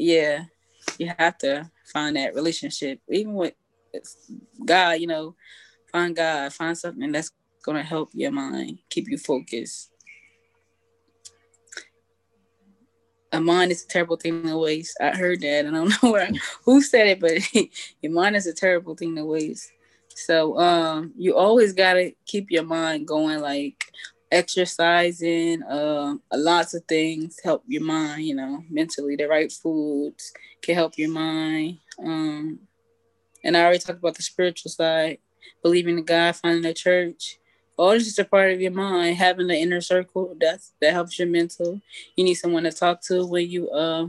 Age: 20-39